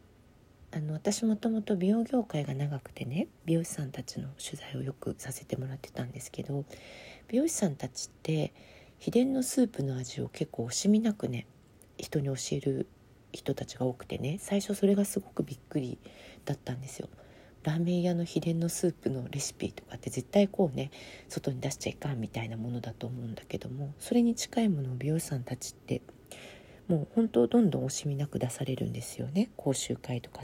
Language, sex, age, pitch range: Japanese, female, 40-59, 125-190 Hz